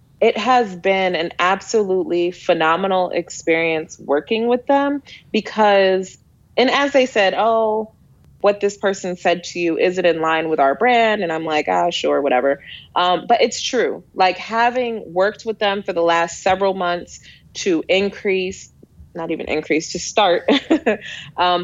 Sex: female